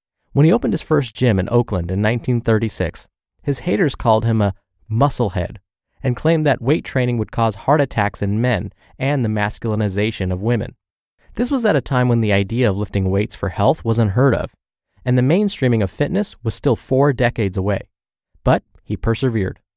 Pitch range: 105-135 Hz